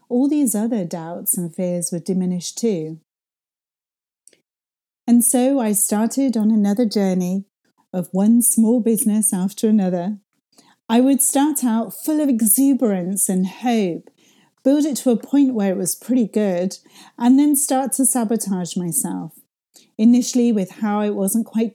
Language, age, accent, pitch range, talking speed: English, 40-59, British, 180-230 Hz, 145 wpm